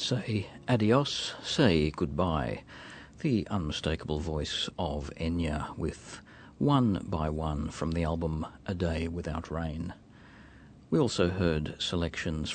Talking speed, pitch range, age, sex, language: 115 wpm, 80-95 Hz, 50-69, male, English